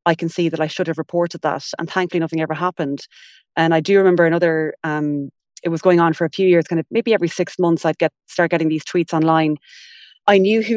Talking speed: 245 wpm